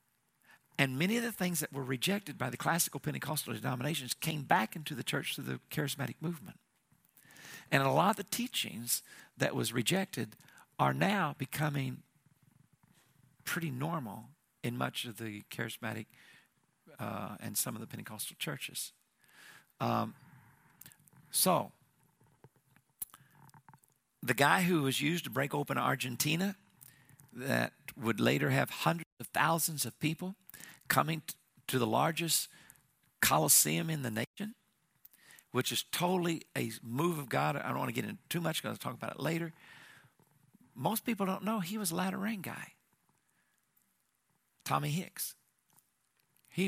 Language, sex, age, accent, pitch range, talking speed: English, male, 50-69, American, 135-185 Hz, 140 wpm